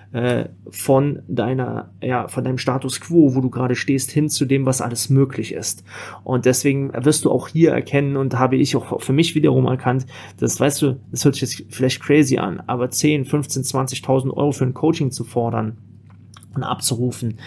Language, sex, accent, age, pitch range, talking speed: German, male, German, 30-49, 115-145 Hz, 185 wpm